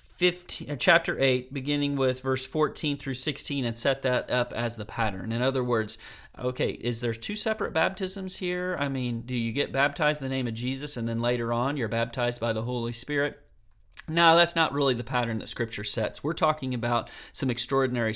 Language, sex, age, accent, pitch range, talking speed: English, male, 40-59, American, 115-140 Hz, 205 wpm